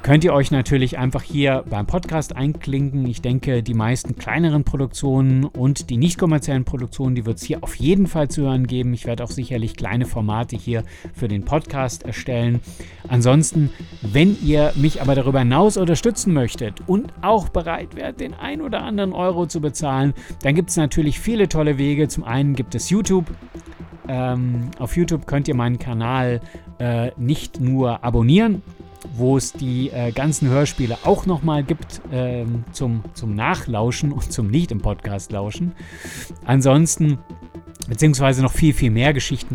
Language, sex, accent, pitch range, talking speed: German, male, German, 115-150 Hz, 160 wpm